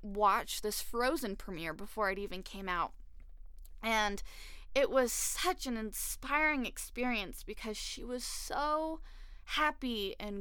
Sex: female